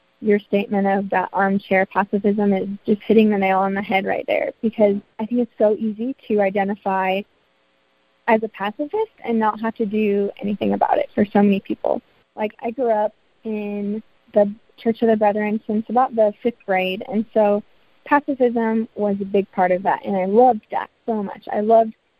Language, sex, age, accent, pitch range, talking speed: English, female, 20-39, American, 200-230 Hz, 190 wpm